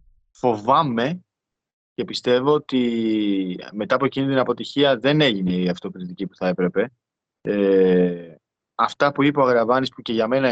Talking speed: 150 wpm